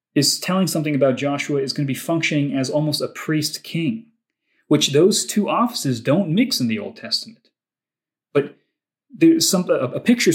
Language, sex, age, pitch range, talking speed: English, male, 30-49, 125-165 Hz, 170 wpm